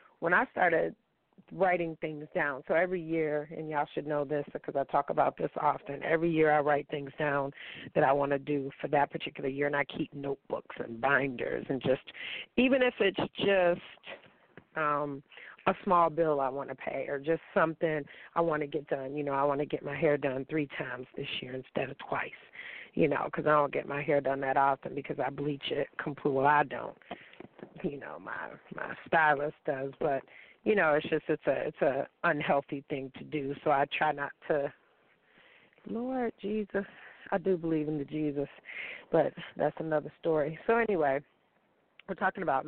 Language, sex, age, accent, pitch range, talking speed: English, female, 40-59, American, 145-175 Hz, 195 wpm